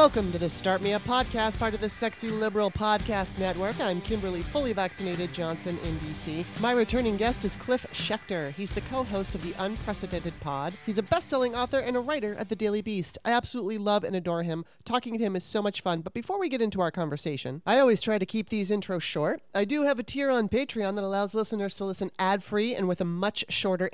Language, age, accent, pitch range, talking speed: English, 30-49, American, 180-240 Hz, 230 wpm